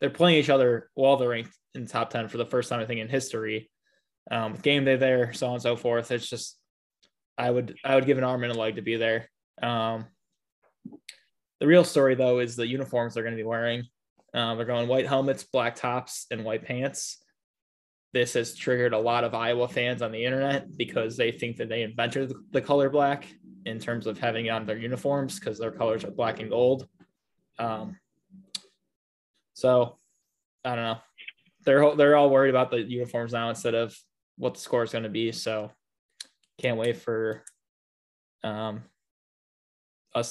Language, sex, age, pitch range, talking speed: English, male, 20-39, 115-135 Hz, 190 wpm